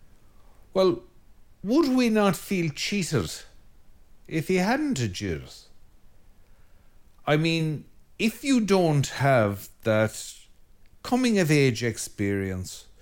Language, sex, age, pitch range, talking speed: English, male, 60-79, 105-165 Hz, 90 wpm